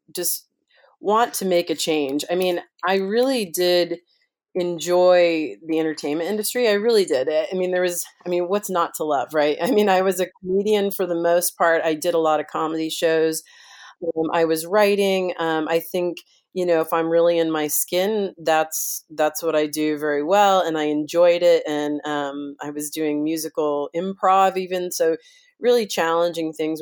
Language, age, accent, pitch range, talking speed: English, 40-59, American, 160-190 Hz, 190 wpm